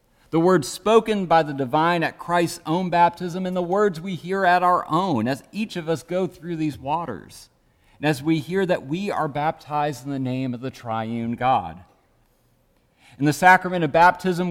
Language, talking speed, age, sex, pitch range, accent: English, 190 wpm, 40-59, male, 125-165 Hz, American